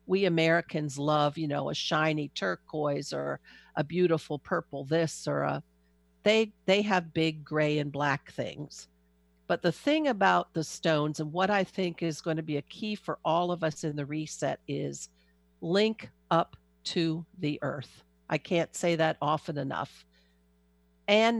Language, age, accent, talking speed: English, 50-69, American, 165 wpm